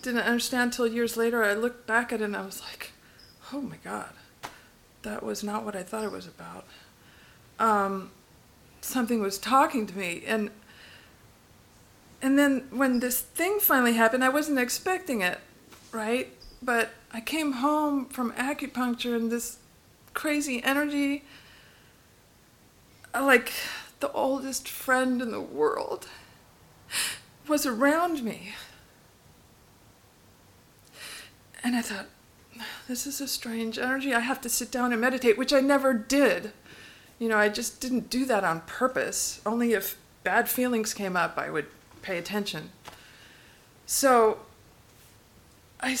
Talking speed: 135 wpm